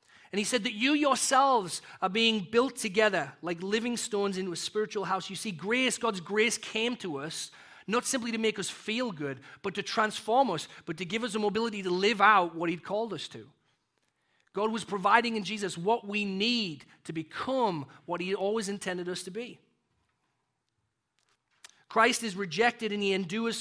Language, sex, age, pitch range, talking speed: English, male, 40-59, 190-240 Hz, 185 wpm